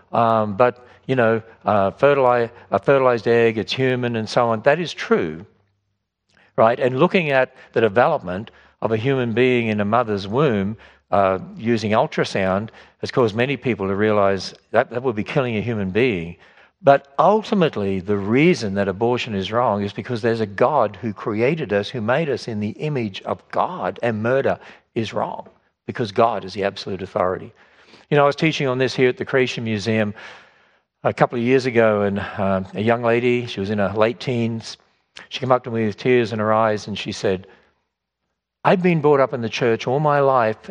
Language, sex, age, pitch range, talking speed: English, male, 60-79, 105-130 Hz, 195 wpm